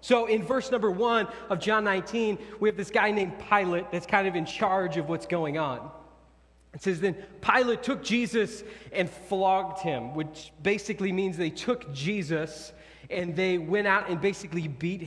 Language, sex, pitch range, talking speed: English, male, 165-215 Hz, 180 wpm